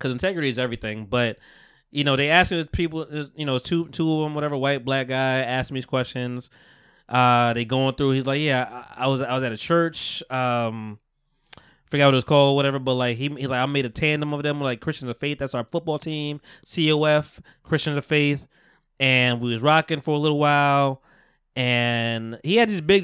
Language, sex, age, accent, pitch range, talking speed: English, male, 20-39, American, 130-160 Hz, 215 wpm